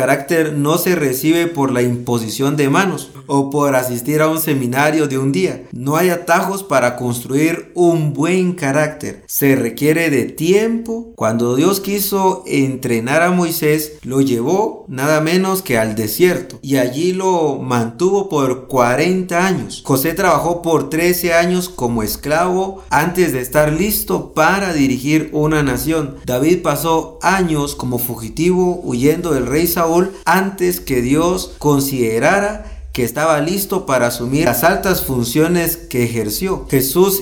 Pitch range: 130-180 Hz